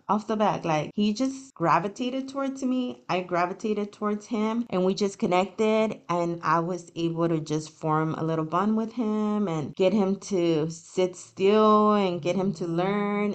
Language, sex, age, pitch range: English, female, 20-39, 165-210 Hz